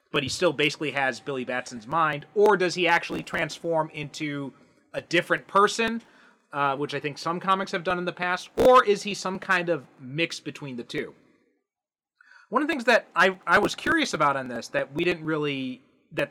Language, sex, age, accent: English, male, 30-49, American